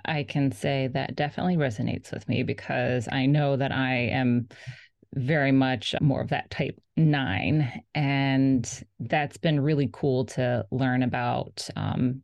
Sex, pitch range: female, 130-155 Hz